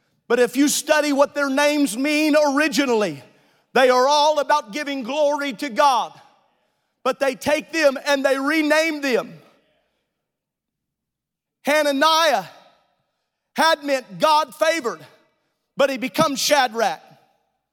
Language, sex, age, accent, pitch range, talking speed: English, male, 40-59, American, 245-305 Hz, 115 wpm